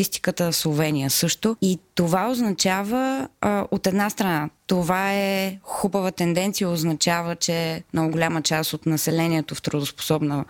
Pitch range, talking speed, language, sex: 160-195 Hz, 130 wpm, Bulgarian, female